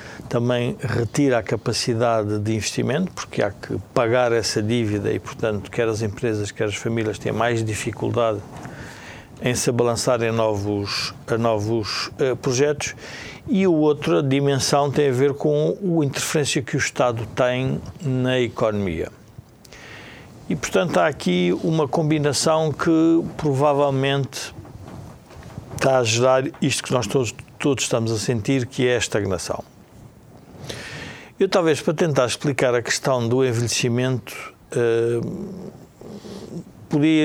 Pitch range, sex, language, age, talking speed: 115-145 Hz, male, Portuguese, 50-69, 130 wpm